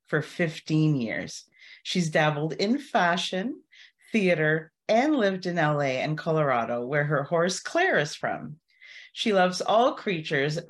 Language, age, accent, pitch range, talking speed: English, 40-59, American, 160-235 Hz, 135 wpm